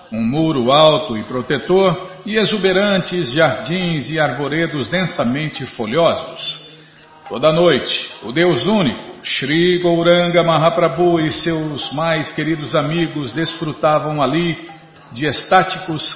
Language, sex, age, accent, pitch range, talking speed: Portuguese, male, 50-69, Brazilian, 150-175 Hz, 110 wpm